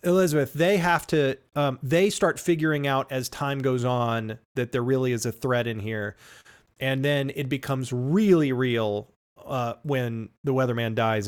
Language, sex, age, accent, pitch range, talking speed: English, male, 40-59, American, 125-155 Hz, 170 wpm